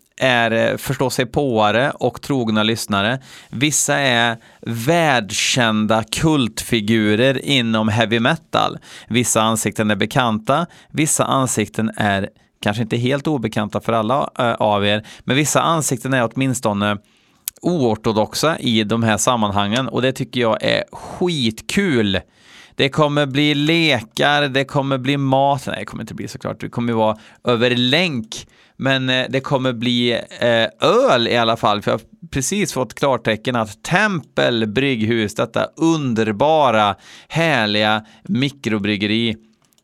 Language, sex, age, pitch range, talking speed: Swedish, male, 30-49, 110-135 Hz, 130 wpm